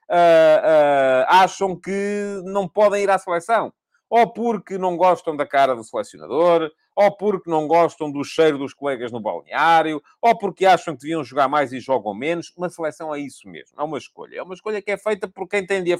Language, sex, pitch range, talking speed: Portuguese, male, 165-205 Hz, 215 wpm